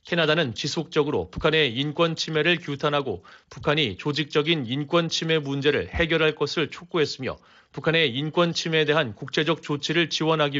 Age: 40-59